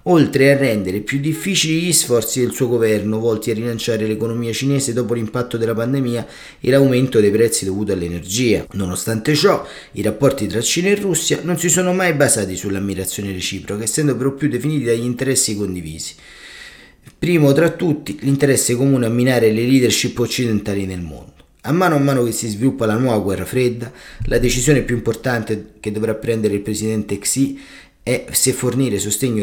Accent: native